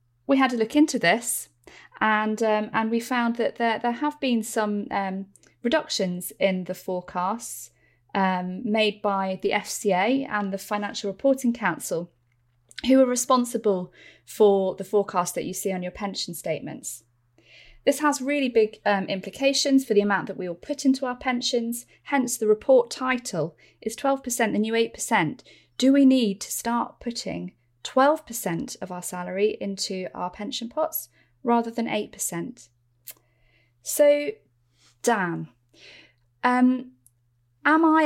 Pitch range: 175-240 Hz